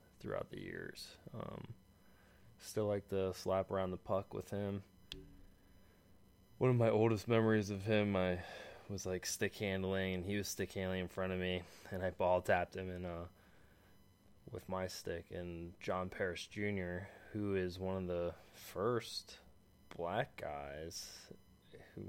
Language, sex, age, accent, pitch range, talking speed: English, male, 20-39, American, 90-105 Hz, 155 wpm